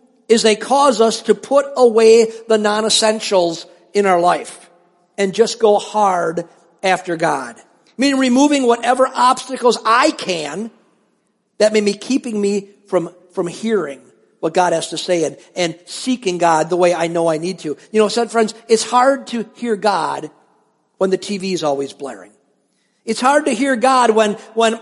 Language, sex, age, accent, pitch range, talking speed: English, male, 50-69, American, 180-235 Hz, 170 wpm